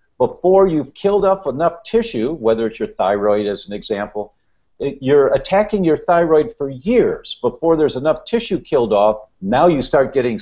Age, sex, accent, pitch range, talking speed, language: 50-69, male, American, 125-195 Hz, 175 wpm, English